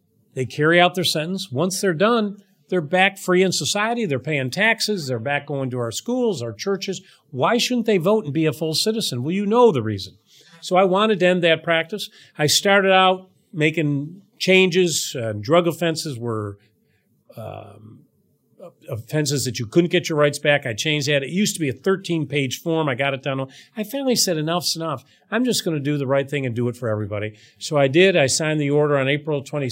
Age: 40-59